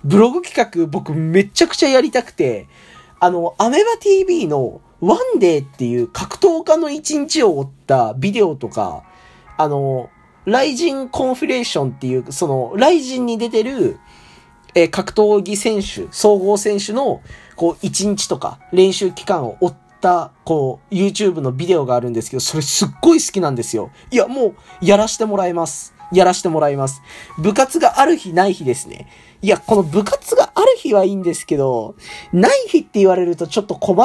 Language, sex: Japanese, male